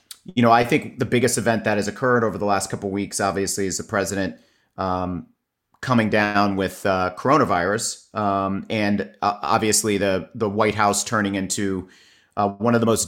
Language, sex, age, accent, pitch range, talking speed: English, male, 40-59, American, 95-110 Hz, 190 wpm